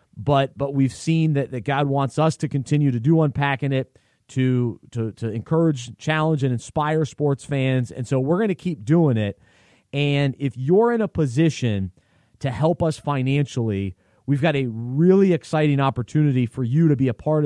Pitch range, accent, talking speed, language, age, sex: 125-155 Hz, American, 185 wpm, English, 30-49, male